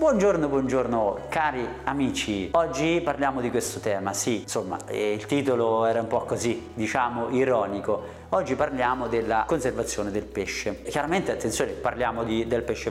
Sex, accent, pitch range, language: male, native, 115-145 Hz, Italian